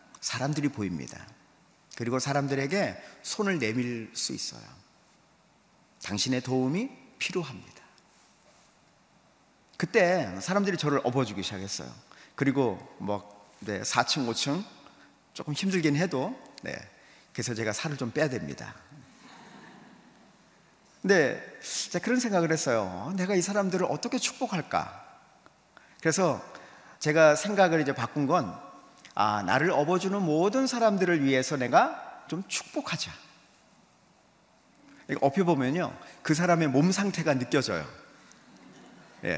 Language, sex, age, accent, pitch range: Korean, male, 40-59, native, 130-180 Hz